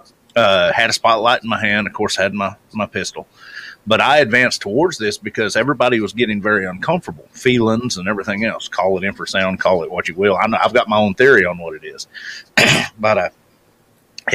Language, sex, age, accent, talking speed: English, male, 30-49, American, 205 wpm